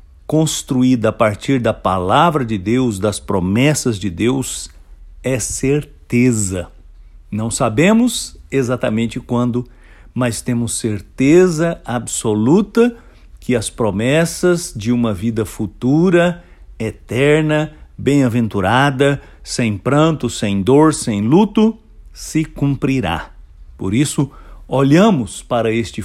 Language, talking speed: English, 100 wpm